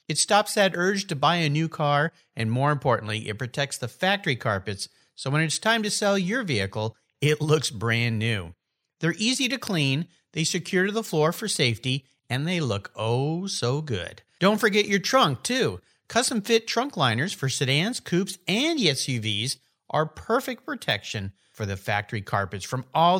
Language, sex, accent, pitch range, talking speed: English, male, American, 120-195 Hz, 175 wpm